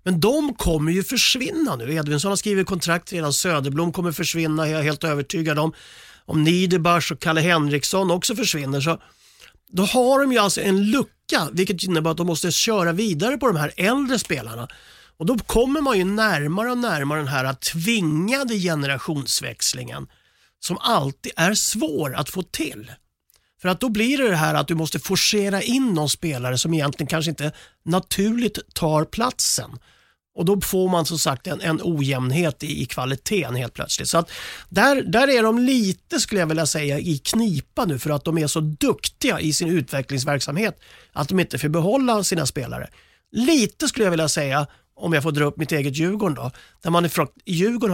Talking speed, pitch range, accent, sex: 180 wpm, 150-200 Hz, Swedish, male